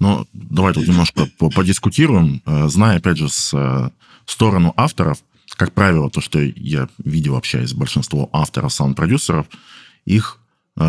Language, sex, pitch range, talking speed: Russian, male, 80-105 Hz, 120 wpm